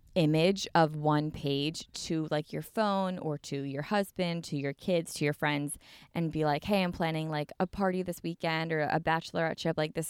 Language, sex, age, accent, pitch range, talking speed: English, female, 20-39, American, 150-190 Hz, 210 wpm